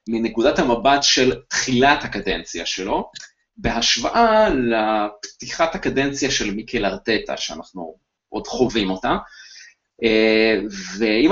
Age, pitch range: 30-49, 105-155 Hz